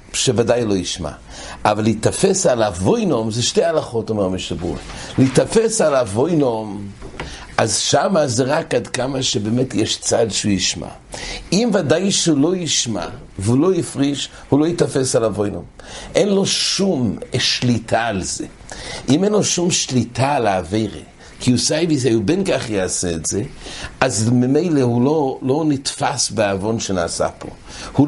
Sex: male